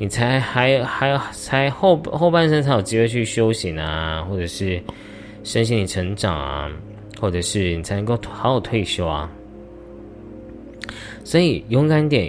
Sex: male